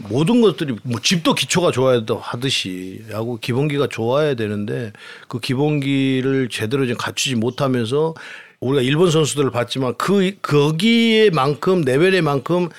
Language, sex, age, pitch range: Korean, male, 50-69, 120-160 Hz